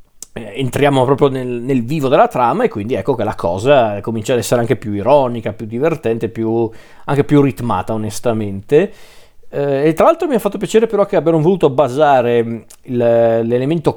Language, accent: Italian, native